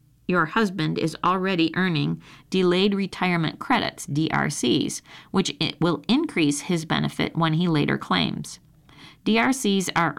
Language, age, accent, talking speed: English, 40-59, American, 120 wpm